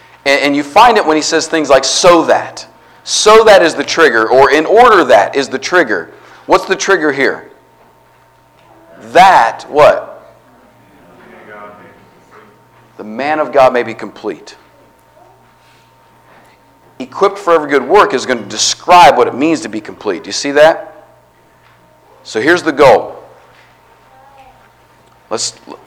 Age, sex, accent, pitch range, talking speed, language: 40-59, male, American, 105-170 Hz, 140 wpm, English